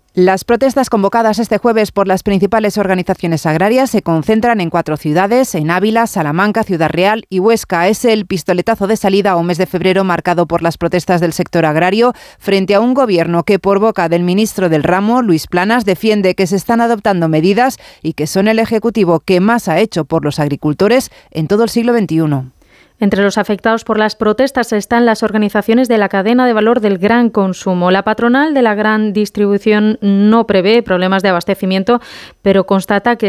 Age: 30-49